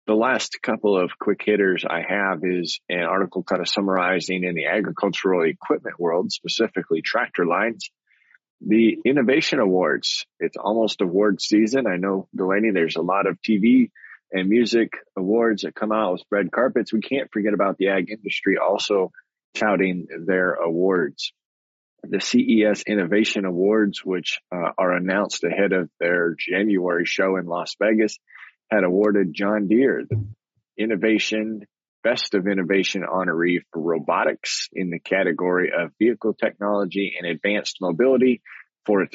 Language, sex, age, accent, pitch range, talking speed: English, male, 20-39, American, 95-110 Hz, 145 wpm